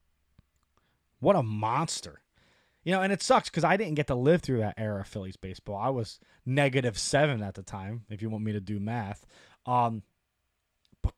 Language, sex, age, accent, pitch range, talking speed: English, male, 30-49, American, 105-155 Hz, 195 wpm